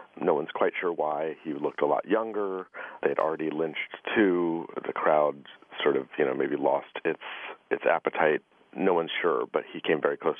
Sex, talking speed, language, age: male, 190 wpm, English, 50-69